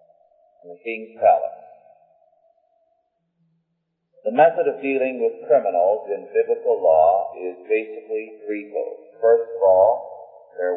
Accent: American